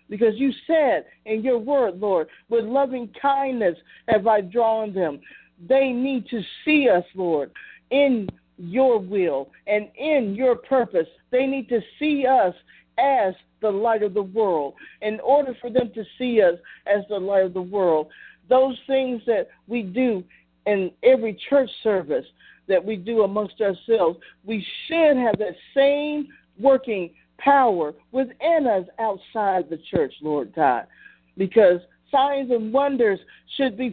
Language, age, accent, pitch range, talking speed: English, 50-69, American, 200-275 Hz, 150 wpm